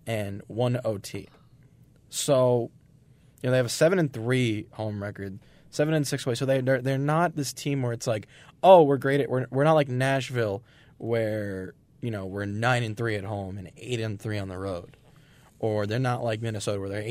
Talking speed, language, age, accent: 205 wpm, English, 20-39, American